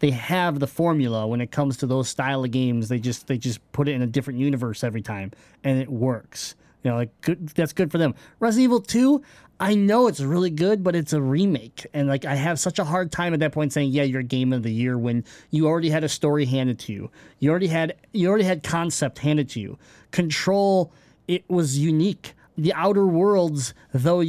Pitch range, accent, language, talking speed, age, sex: 135-180 Hz, American, English, 225 wpm, 20-39, male